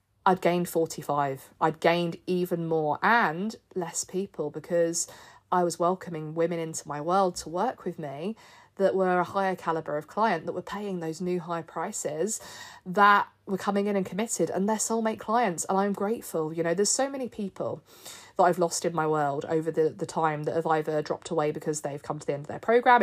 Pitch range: 160-200 Hz